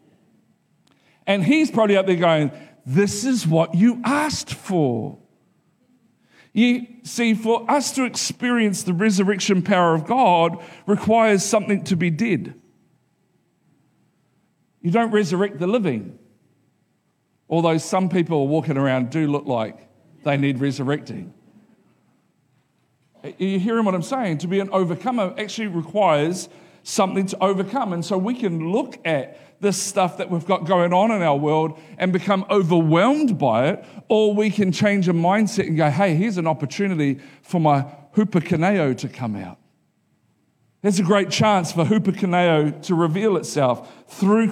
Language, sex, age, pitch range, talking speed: English, male, 50-69, 165-210 Hz, 145 wpm